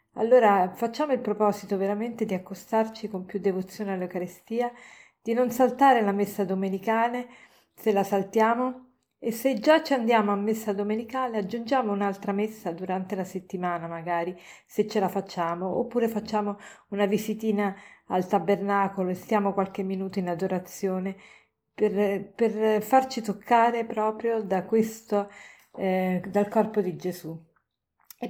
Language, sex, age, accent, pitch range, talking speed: Italian, female, 40-59, native, 190-230 Hz, 130 wpm